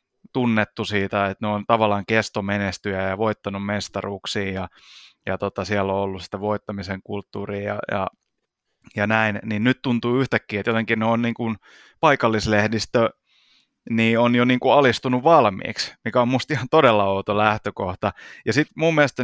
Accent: native